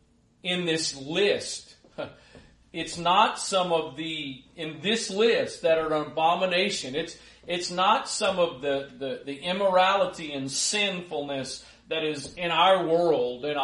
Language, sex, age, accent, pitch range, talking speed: English, male, 40-59, American, 140-180 Hz, 140 wpm